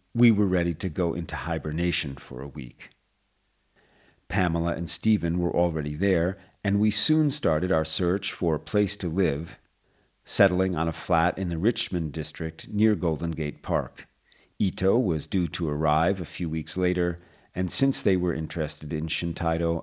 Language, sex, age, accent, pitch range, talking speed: English, male, 40-59, American, 80-100 Hz, 165 wpm